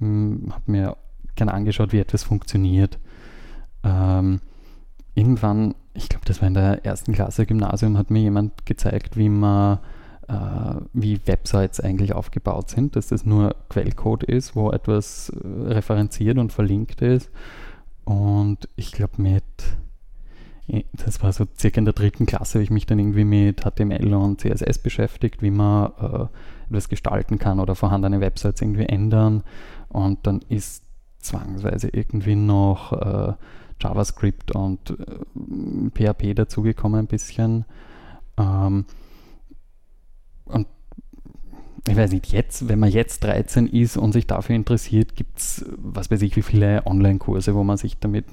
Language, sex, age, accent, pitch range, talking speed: German, male, 20-39, German, 100-110 Hz, 145 wpm